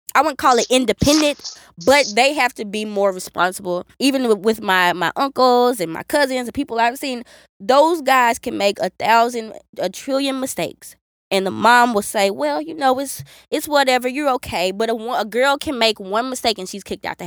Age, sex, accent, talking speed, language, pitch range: 20-39, female, American, 205 wpm, English, 200-255 Hz